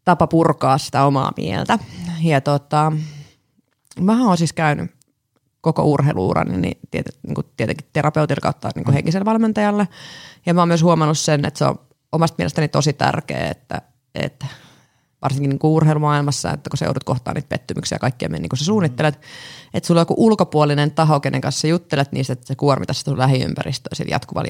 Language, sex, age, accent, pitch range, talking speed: Finnish, female, 30-49, native, 135-155 Hz, 160 wpm